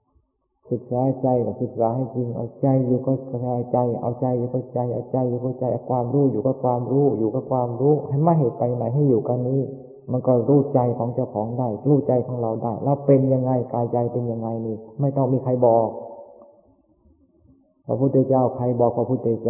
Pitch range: 120-135 Hz